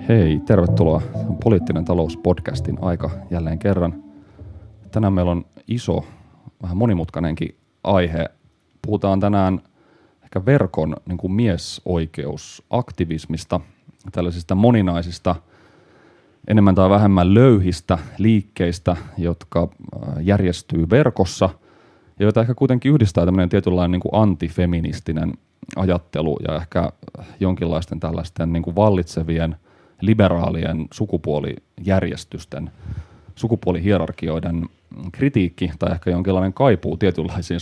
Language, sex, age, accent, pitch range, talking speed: Finnish, male, 30-49, native, 85-100 Hz, 95 wpm